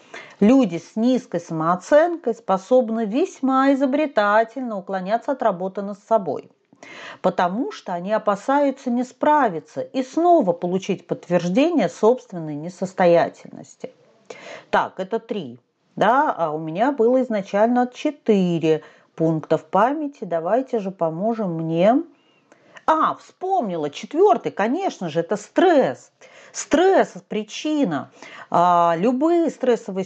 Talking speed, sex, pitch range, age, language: 110 wpm, female, 185-260 Hz, 40-59, Russian